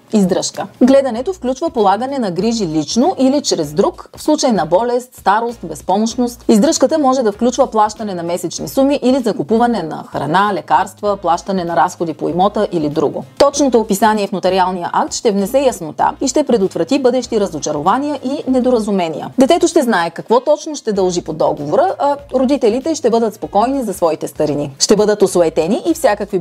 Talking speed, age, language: 165 wpm, 30-49, Bulgarian